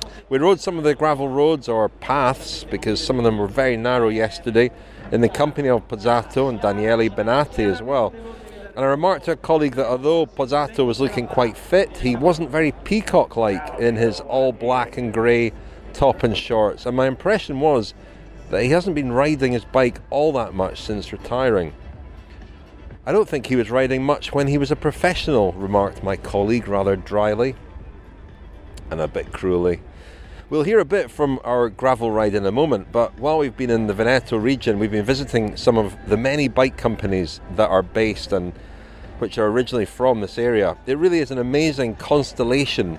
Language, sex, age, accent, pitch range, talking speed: English, male, 30-49, British, 100-135 Hz, 185 wpm